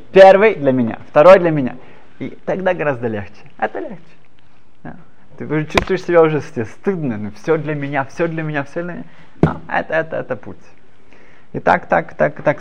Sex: male